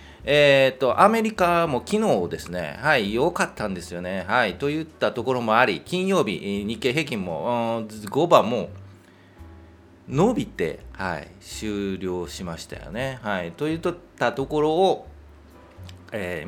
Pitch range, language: 90-150 Hz, Japanese